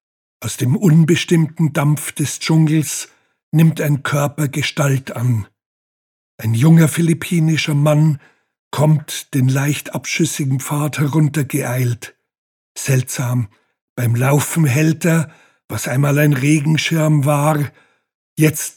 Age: 60-79